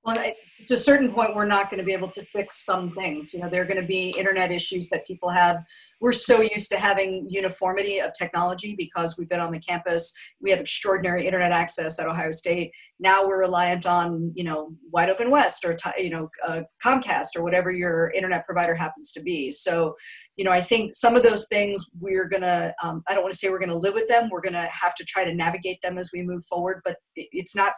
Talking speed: 230 wpm